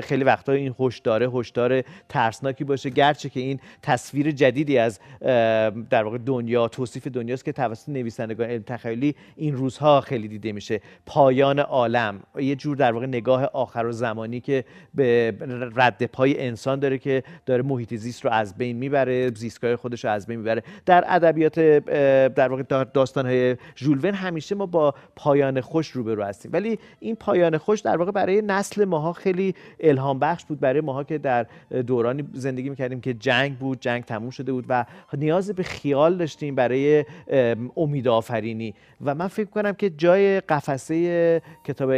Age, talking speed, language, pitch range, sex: 40-59, 170 wpm, Persian, 125-155 Hz, male